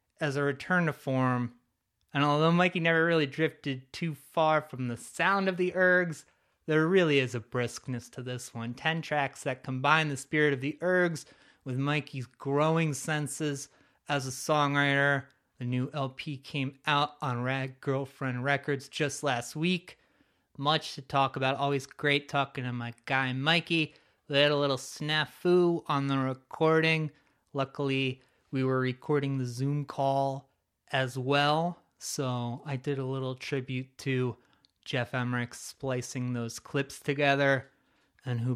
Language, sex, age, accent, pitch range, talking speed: English, male, 30-49, American, 125-155 Hz, 155 wpm